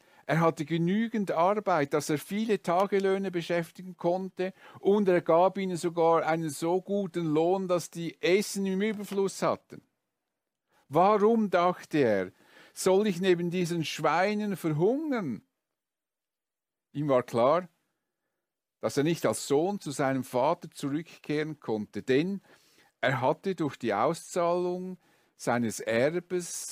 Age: 50-69